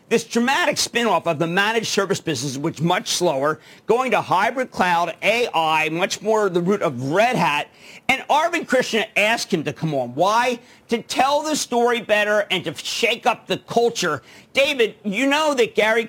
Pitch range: 170-240 Hz